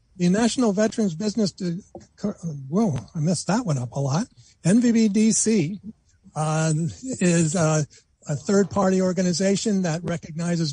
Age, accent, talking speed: 60-79, American, 125 wpm